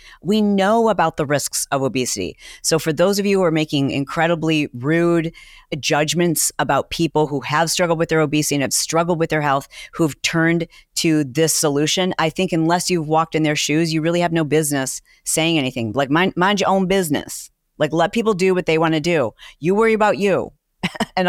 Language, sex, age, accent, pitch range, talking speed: English, female, 40-59, American, 140-170 Hz, 200 wpm